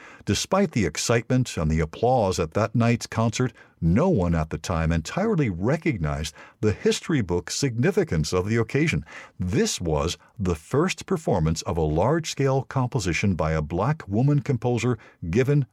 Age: 60-79